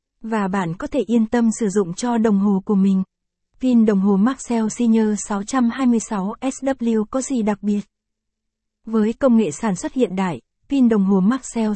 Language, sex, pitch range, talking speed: Vietnamese, female, 205-245 Hz, 175 wpm